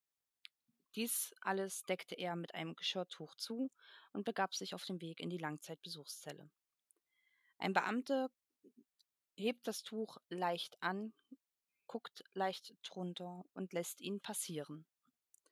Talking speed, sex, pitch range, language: 120 wpm, female, 180-230 Hz, German